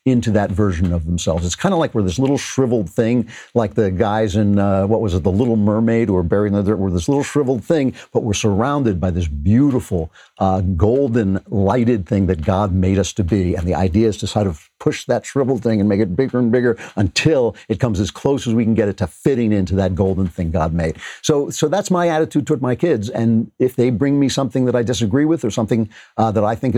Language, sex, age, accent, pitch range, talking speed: English, male, 50-69, American, 95-120 Hz, 240 wpm